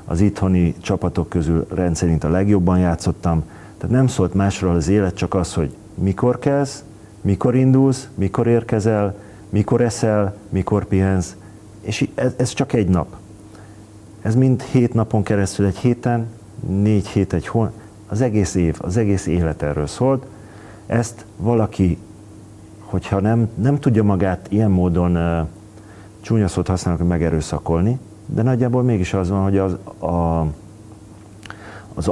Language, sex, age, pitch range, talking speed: Hungarian, male, 40-59, 90-105 Hz, 140 wpm